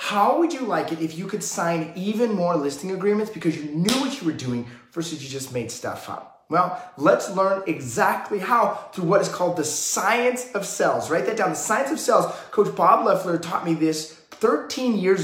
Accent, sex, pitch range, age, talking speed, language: American, male, 160-215 Hz, 20-39, 215 wpm, English